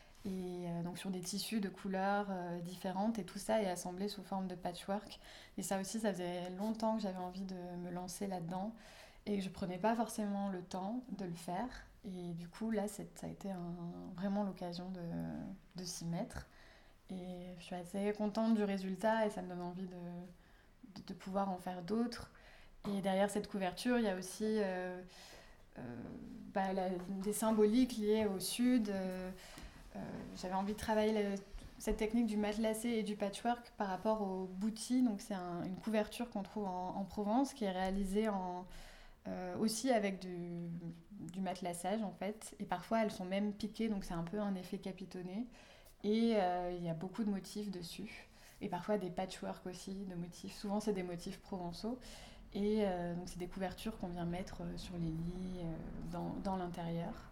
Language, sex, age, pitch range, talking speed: French, female, 20-39, 180-210 Hz, 190 wpm